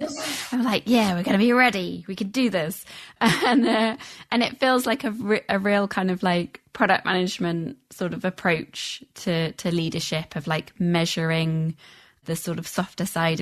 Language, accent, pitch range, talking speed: English, British, 160-205 Hz, 185 wpm